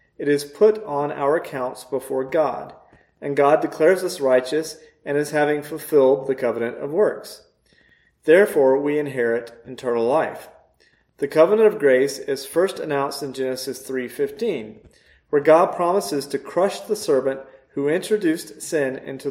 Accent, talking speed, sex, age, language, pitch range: American, 150 wpm, male, 40-59, English, 130-180 Hz